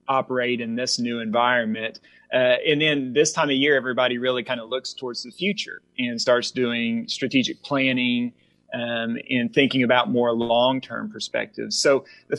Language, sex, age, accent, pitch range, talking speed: English, male, 30-49, American, 120-135 Hz, 170 wpm